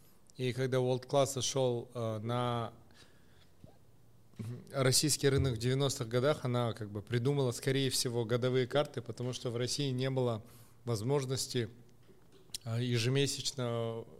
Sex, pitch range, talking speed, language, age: male, 115-135 Hz, 115 wpm, Russian, 30-49